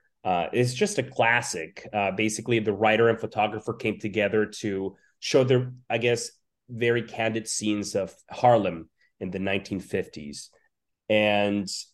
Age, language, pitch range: 30-49, English, 100-125 Hz